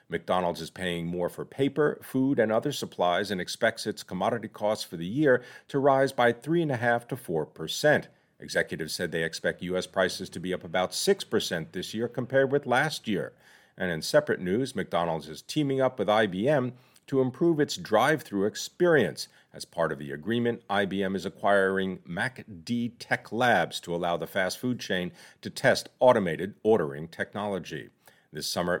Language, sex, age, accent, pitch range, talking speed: English, male, 50-69, American, 95-135 Hz, 170 wpm